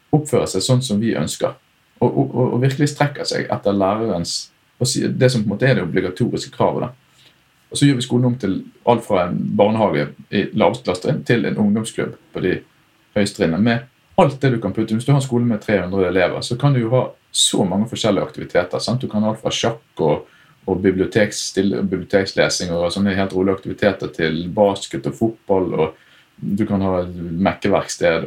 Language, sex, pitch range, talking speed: English, male, 100-130 Hz, 175 wpm